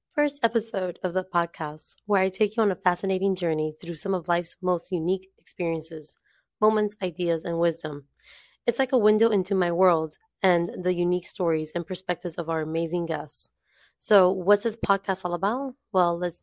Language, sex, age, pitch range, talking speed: English, female, 20-39, 165-200 Hz, 180 wpm